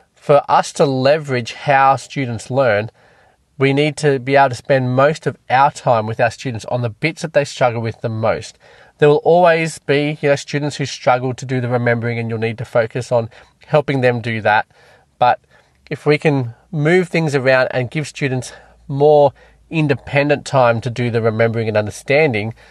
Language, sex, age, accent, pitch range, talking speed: English, male, 20-39, Australian, 120-145 Hz, 185 wpm